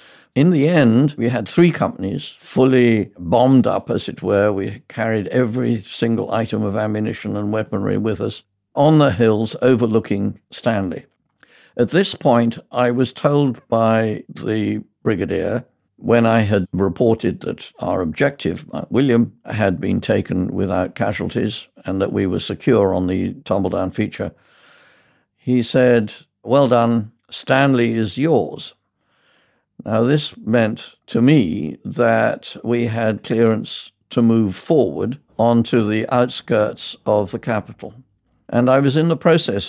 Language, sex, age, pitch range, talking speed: English, male, 50-69, 105-125 Hz, 140 wpm